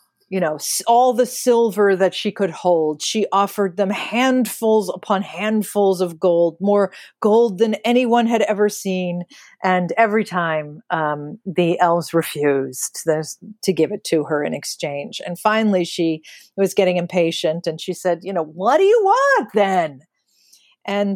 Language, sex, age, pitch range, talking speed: English, female, 40-59, 170-210 Hz, 155 wpm